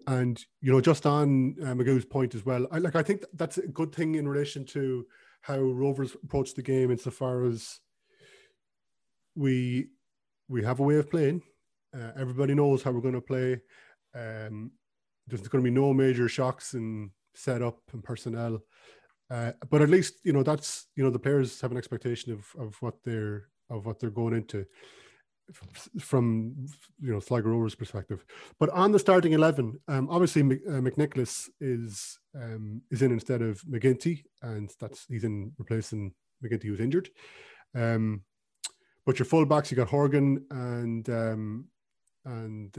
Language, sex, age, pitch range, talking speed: English, male, 30-49, 115-145 Hz, 165 wpm